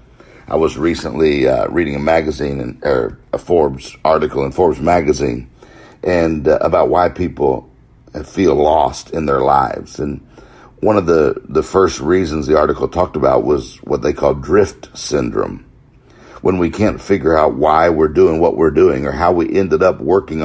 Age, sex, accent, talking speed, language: 60-79, male, American, 175 wpm, English